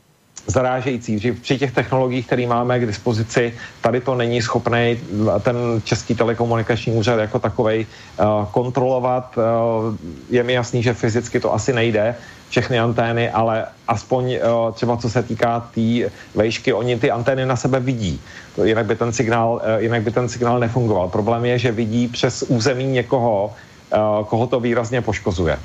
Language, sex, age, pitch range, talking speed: Slovak, male, 40-59, 115-130 Hz, 160 wpm